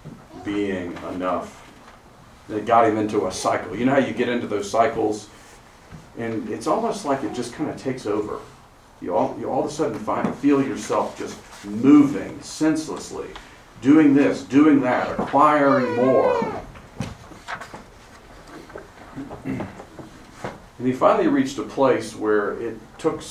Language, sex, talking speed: English, male, 140 wpm